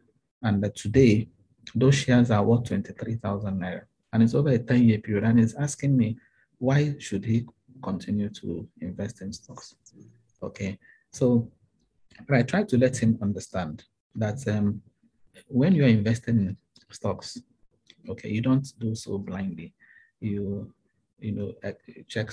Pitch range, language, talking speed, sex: 100-120 Hz, English, 145 wpm, male